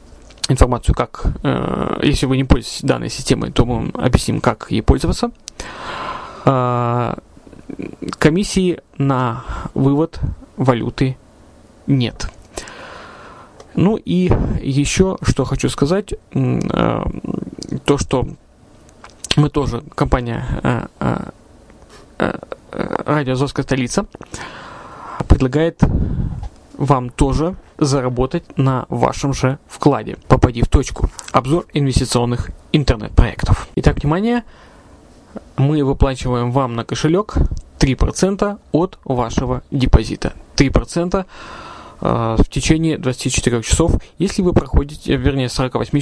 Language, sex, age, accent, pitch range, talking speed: Russian, male, 20-39, native, 120-150 Hz, 95 wpm